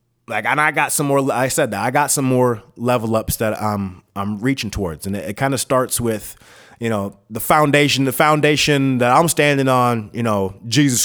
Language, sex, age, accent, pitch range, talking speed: English, male, 30-49, American, 105-130 Hz, 215 wpm